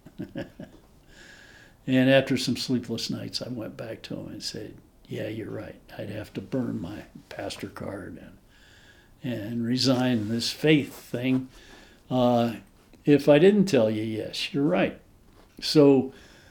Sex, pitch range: male, 110-130 Hz